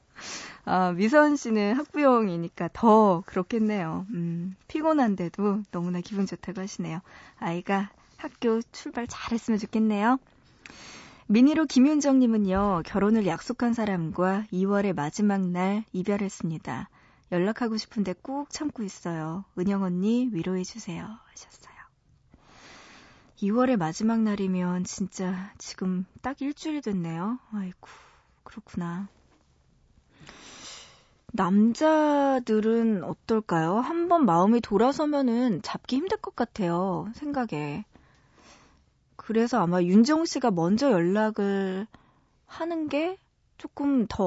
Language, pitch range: Korean, 185-245 Hz